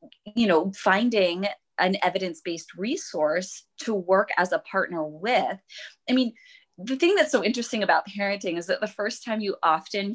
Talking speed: 165 wpm